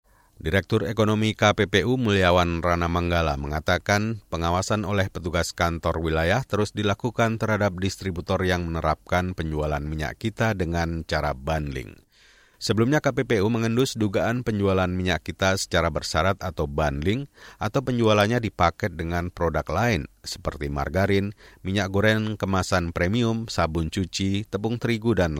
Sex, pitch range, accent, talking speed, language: male, 85-115 Hz, native, 125 wpm, Indonesian